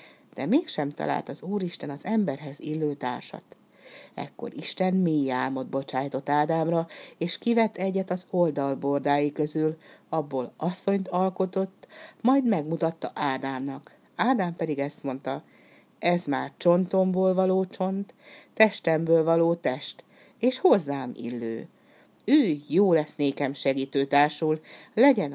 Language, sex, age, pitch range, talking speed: Hungarian, female, 60-79, 140-190 Hz, 115 wpm